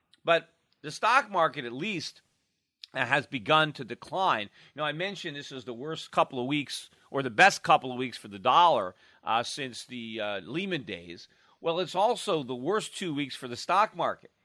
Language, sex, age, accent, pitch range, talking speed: English, male, 40-59, American, 120-160 Hz, 195 wpm